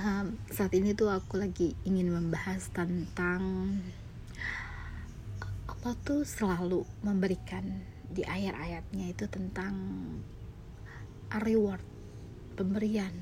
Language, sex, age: Indonesian, female, 20-39